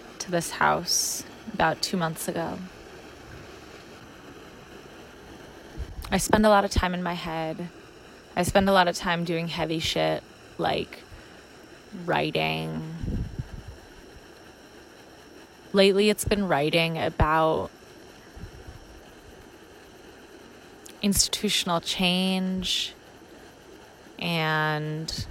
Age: 20-39